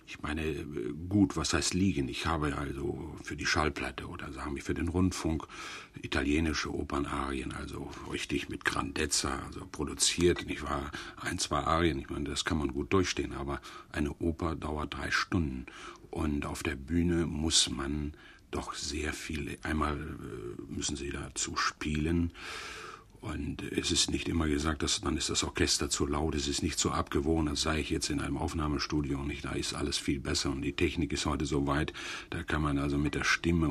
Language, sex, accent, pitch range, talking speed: German, male, German, 70-85 Hz, 185 wpm